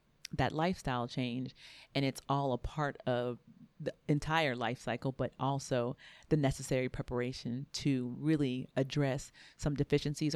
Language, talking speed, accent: English, 135 wpm, American